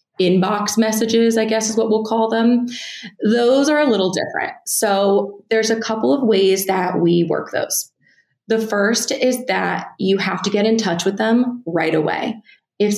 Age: 20-39